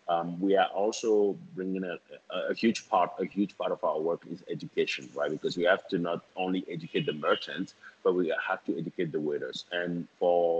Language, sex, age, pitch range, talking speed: English, male, 30-49, 80-95 Hz, 210 wpm